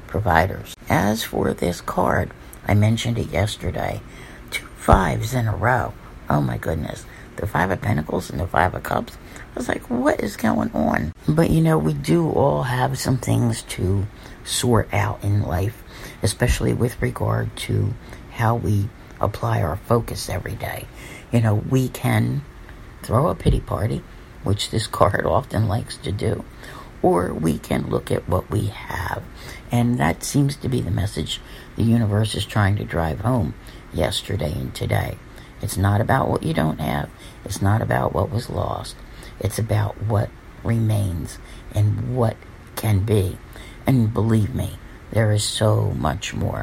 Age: 60-79